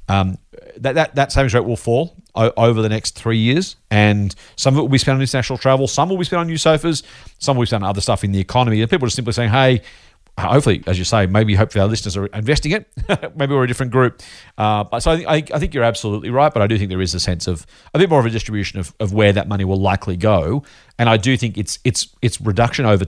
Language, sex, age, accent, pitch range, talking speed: English, male, 40-59, Australian, 100-135 Hz, 270 wpm